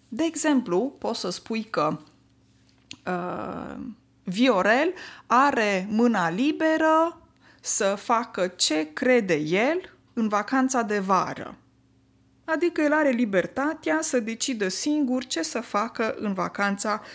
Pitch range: 175-245 Hz